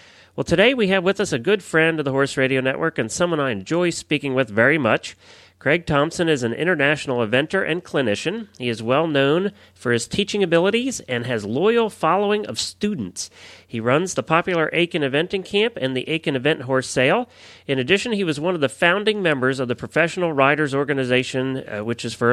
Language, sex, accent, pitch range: English, male, American, 125-175 Hz